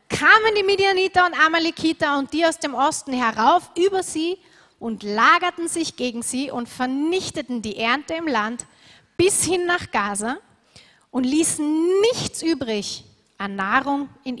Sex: female